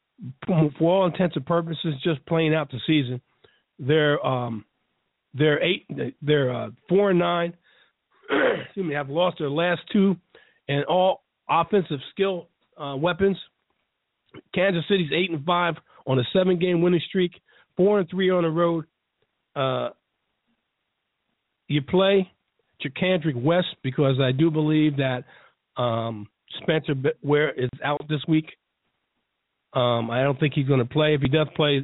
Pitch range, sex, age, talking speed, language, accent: 140-175 Hz, male, 50-69, 150 wpm, English, American